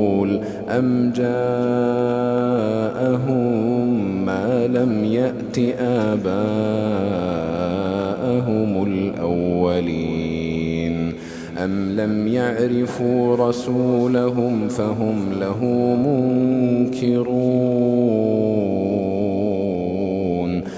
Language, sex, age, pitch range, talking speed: Arabic, male, 40-59, 100-125 Hz, 40 wpm